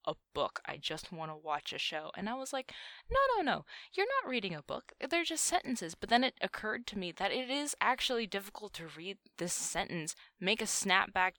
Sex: female